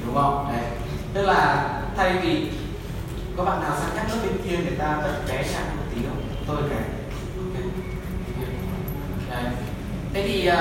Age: 20-39